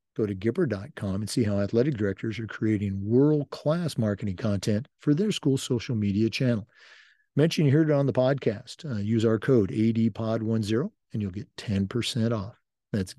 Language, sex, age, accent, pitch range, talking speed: English, male, 50-69, American, 110-140 Hz, 170 wpm